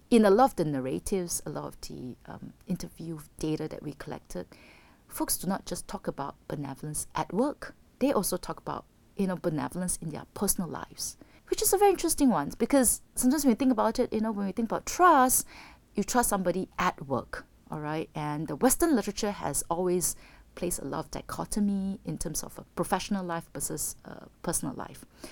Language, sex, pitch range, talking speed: English, female, 160-245 Hz, 195 wpm